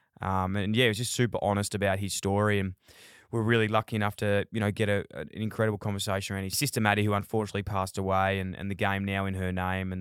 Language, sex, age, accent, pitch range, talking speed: English, male, 20-39, Australian, 95-115 Hz, 250 wpm